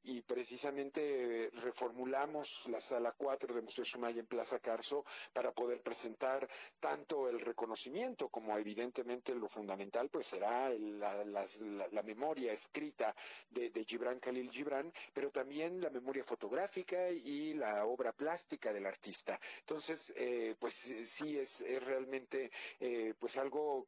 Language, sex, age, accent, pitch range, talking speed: Spanish, male, 50-69, Mexican, 120-155 Hz, 140 wpm